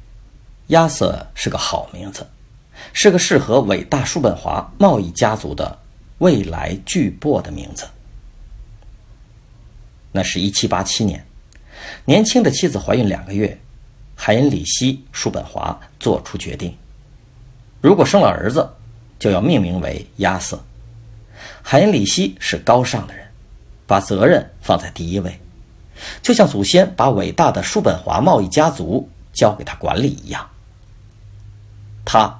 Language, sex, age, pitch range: Chinese, male, 50-69, 100-120 Hz